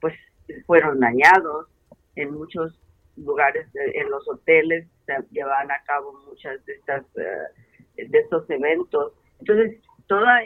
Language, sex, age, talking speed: Spanish, female, 40-59, 120 wpm